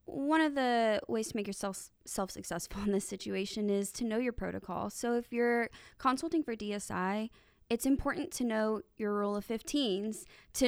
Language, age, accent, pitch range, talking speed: English, 20-39, American, 205-255 Hz, 175 wpm